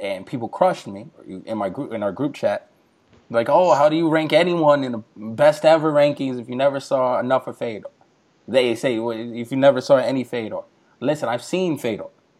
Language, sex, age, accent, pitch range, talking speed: English, male, 20-39, American, 120-160 Hz, 210 wpm